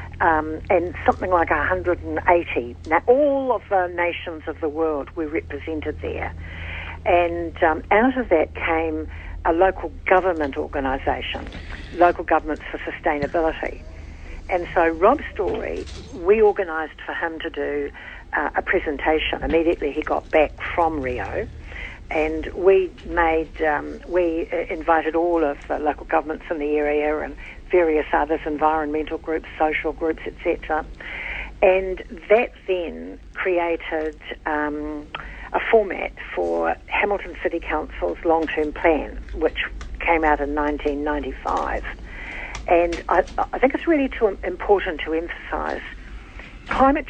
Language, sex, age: English, female, 60-79